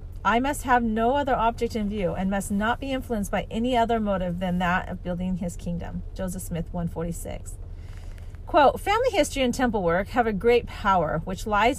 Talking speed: 195 wpm